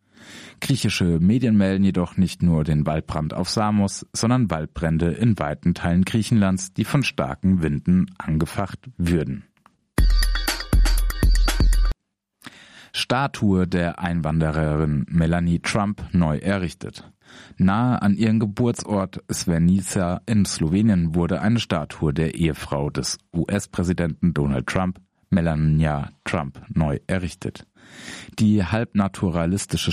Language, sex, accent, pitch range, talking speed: German, male, German, 85-105 Hz, 100 wpm